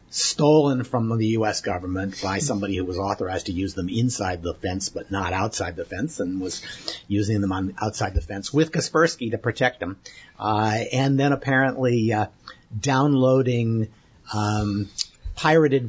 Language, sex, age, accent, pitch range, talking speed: English, male, 50-69, American, 100-140 Hz, 160 wpm